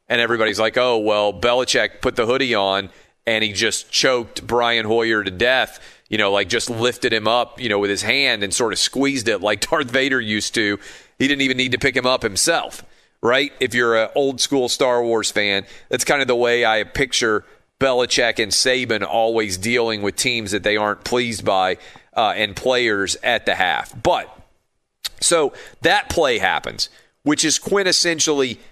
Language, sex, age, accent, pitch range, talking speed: English, male, 40-59, American, 115-145 Hz, 190 wpm